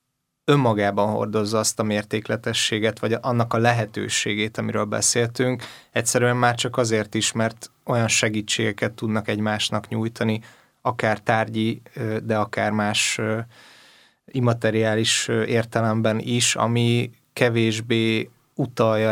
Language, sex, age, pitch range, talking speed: Hungarian, male, 20-39, 105-115 Hz, 105 wpm